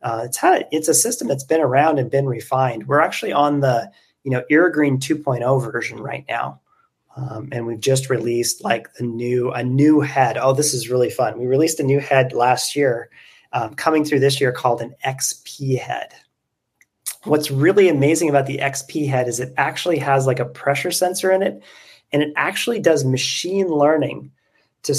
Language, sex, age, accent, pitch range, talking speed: English, male, 30-49, American, 130-160 Hz, 185 wpm